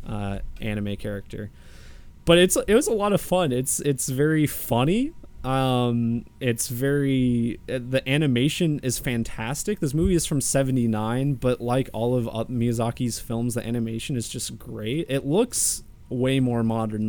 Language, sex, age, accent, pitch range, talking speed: English, male, 20-39, American, 105-135 Hz, 155 wpm